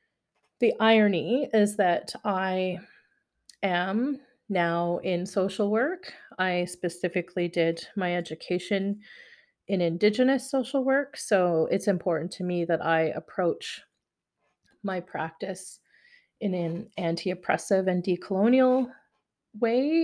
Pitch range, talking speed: 175-210 Hz, 105 wpm